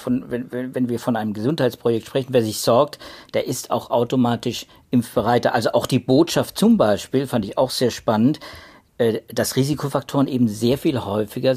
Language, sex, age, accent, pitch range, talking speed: German, male, 50-69, German, 110-135 Hz, 170 wpm